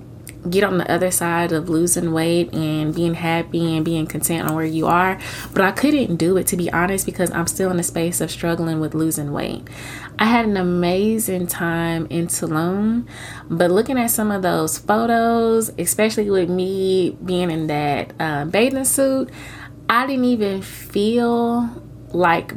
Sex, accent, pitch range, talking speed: female, American, 165-210 Hz, 175 wpm